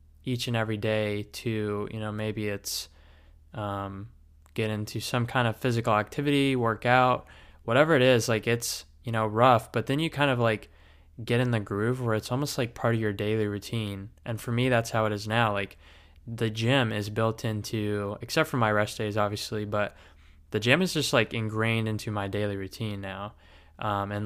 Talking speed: 195 wpm